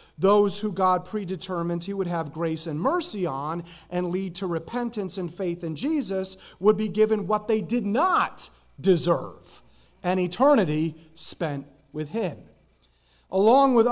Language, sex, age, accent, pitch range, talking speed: English, male, 30-49, American, 160-215 Hz, 145 wpm